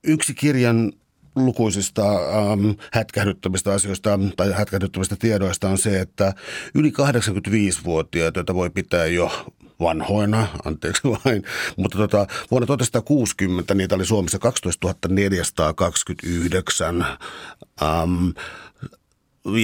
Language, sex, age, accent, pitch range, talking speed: Finnish, male, 60-79, native, 90-110 Hz, 95 wpm